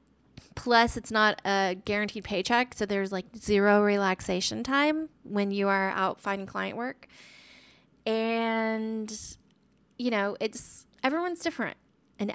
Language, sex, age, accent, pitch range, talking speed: English, female, 20-39, American, 210-245 Hz, 125 wpm